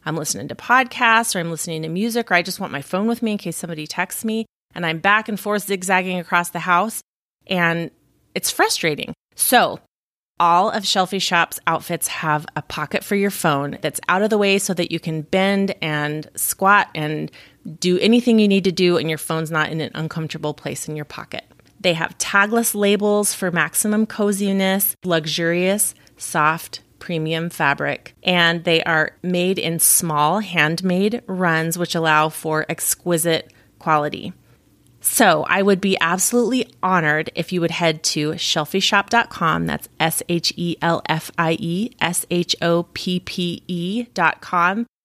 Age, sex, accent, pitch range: 30-49, female, American, 160-205 Hz